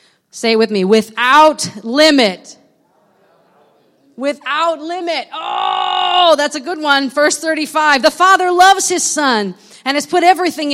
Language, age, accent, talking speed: English, 30-49, American, 135 wpm